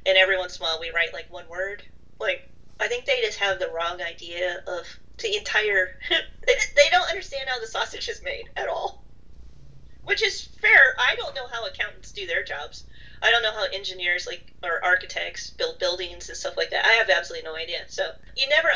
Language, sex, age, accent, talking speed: English, female, 30-49, American, 215 wpm